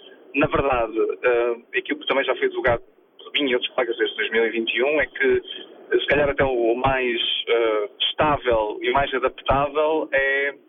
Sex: male